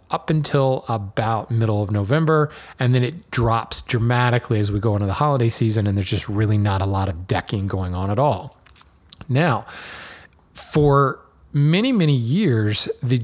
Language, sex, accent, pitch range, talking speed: English, male, American, 110-145 Hz, 170 wpm